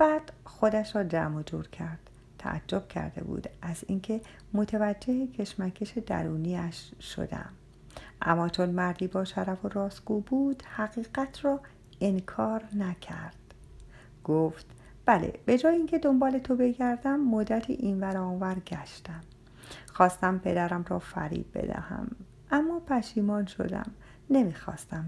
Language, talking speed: Persian, 115 wpm